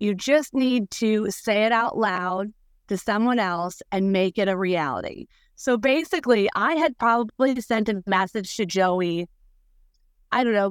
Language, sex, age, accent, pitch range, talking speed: English, female, 30-49, American, 185-235 Hz, 160 wpm